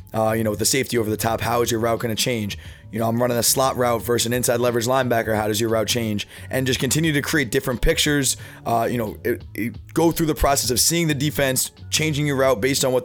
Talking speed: 260 wpm